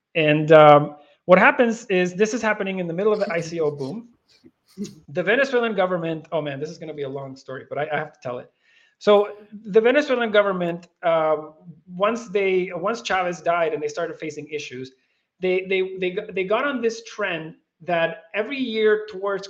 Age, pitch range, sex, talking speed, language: 30-49, 160-215 Hz, male, 190 wpm, English